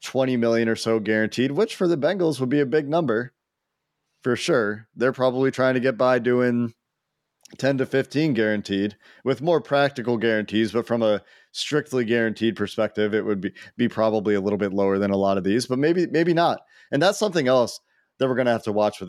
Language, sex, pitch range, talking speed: English, male, 105-130 Hz, 210 wpm